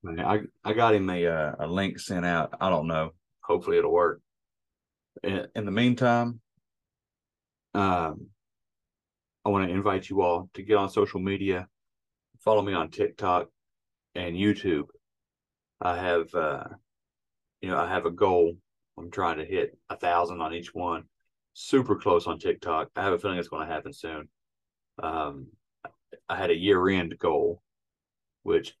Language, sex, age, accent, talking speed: English, male, 30-49, American, 160 wpm